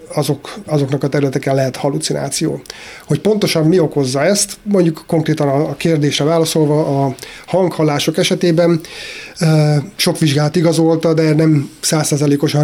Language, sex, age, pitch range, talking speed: Hungarian, male, 30-49, 145-165 Hz, 120 wpm